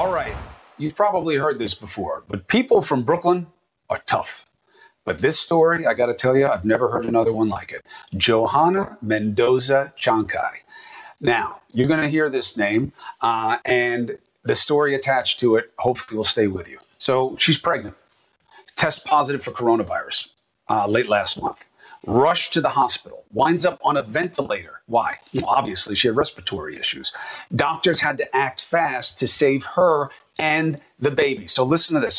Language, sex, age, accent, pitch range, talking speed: English, male, 40-59, American, 125-175 Hz, 170 wpm